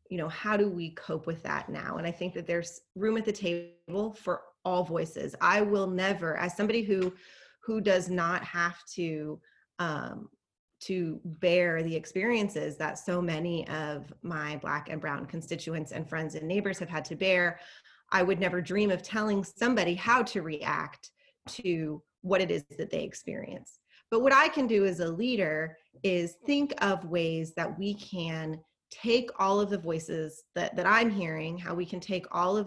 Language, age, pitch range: English, 30-49, 165-205 Hz